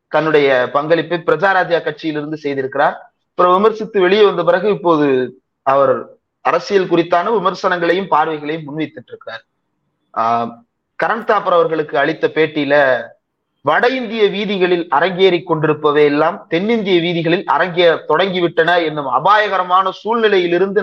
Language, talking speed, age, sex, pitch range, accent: Tamil, 95 wpm, 30-49, male, 150-195 Hz, native